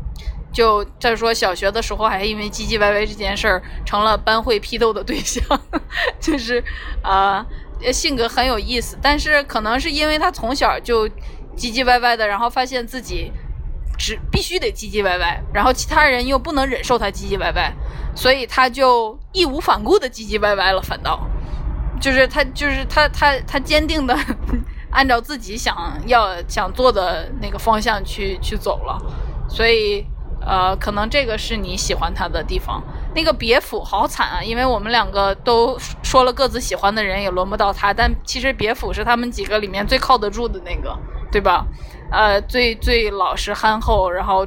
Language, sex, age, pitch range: Chinese, female, 20-39, 205-260 Hz